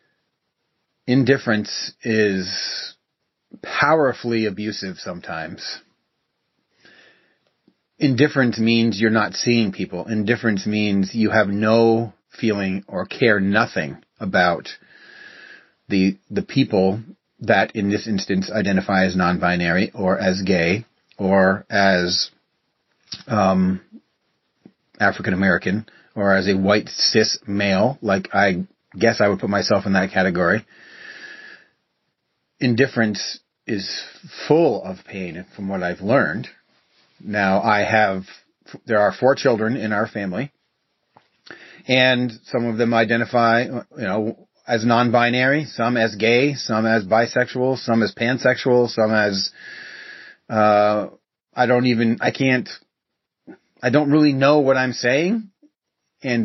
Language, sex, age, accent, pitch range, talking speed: English, male, 30-49, American, 100-125 Hz, 115 wpm